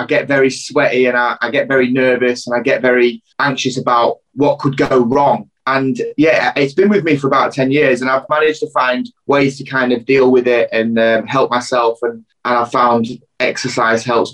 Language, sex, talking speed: English, male, 220 wpm